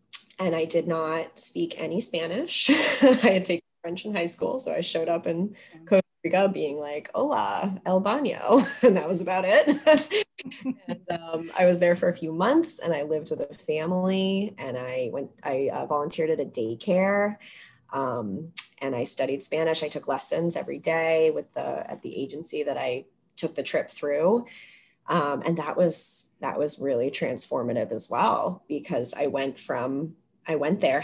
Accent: American